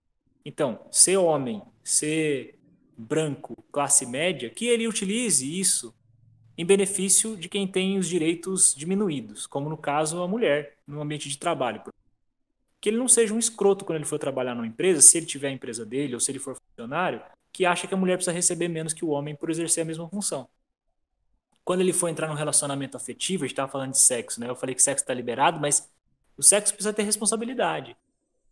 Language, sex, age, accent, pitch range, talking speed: Portuguese, male, 20-39, Brazilian, 145-195 Hz, 195 wpm